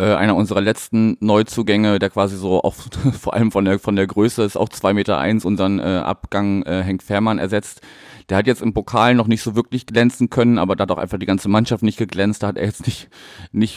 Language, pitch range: German, 95-115 Hz